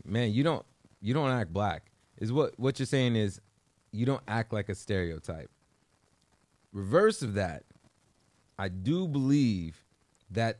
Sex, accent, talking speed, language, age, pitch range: male, American, 145 wpm, English, 30-49, 100-130 Hz